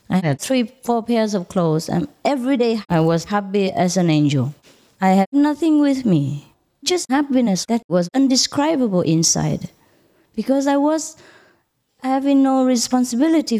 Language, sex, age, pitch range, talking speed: English, female, 30-49, 150-205 Hz, 145 wpm